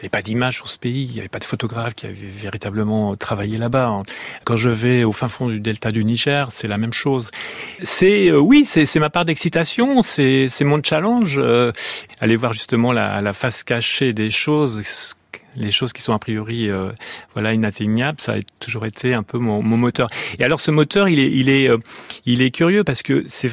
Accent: French